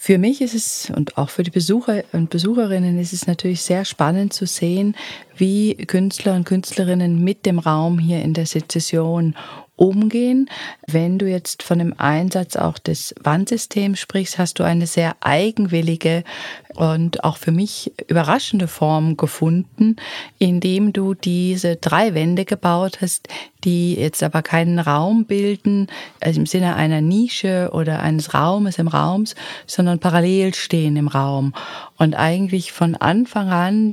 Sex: female